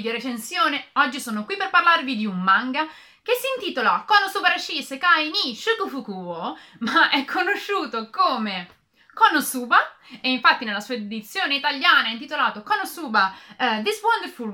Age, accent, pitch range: 30-49, native, 205-305 Hz